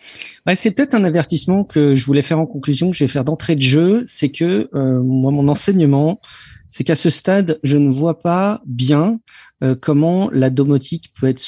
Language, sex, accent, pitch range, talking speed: French, male, French, 135-170 Hz, 205 wpm